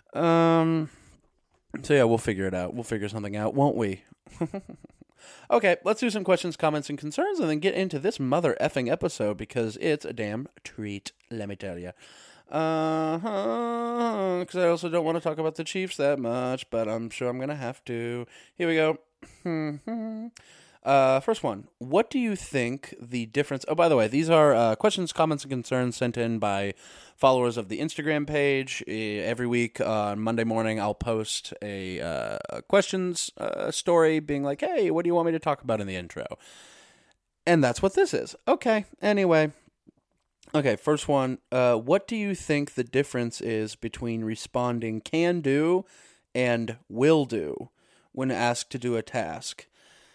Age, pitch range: 20-39, 115-165 Hz